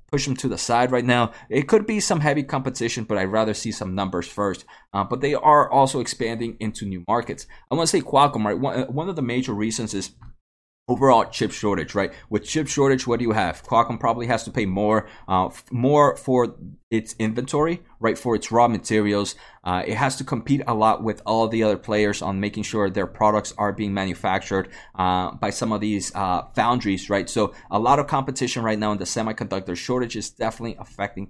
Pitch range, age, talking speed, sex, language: 100-130 Hz, 20-39, 210 wpm, male, English